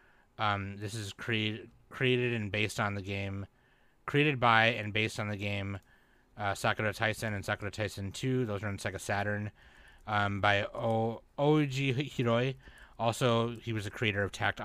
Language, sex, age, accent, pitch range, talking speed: English, male, 30-49, American, 100-120 Hz, 170 wpm